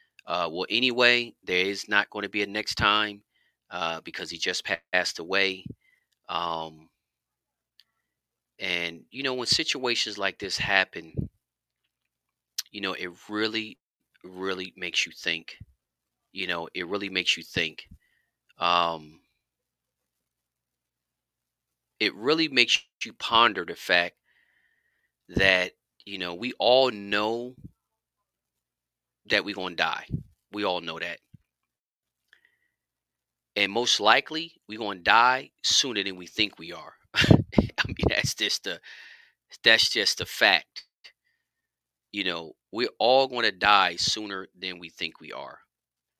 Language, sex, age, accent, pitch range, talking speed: English, male, 30-49, American, 80-110 Hz, 130 wpm